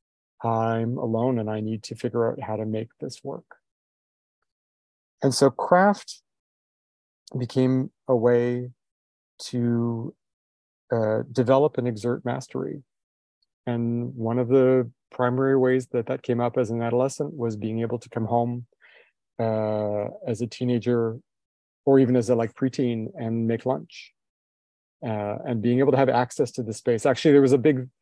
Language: English